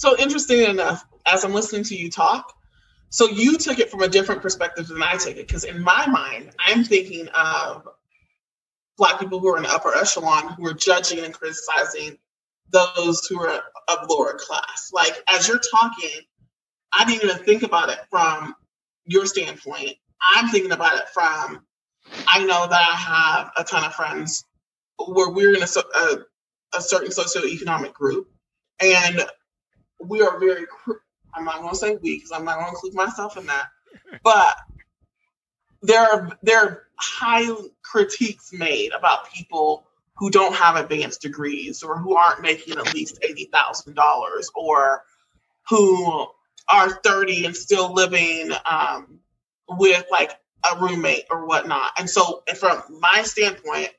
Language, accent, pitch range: English, American, 175-240 Hz